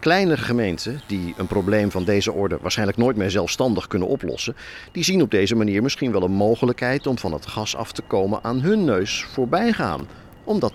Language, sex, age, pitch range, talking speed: Dutch, male, 50-69, 100-135 Hz, 200 wpm